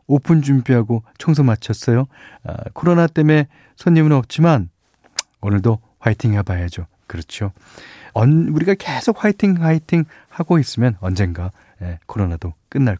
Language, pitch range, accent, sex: Korean, 105-165 Hz, native, male